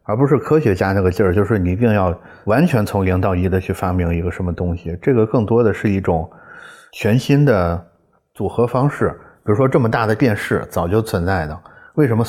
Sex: male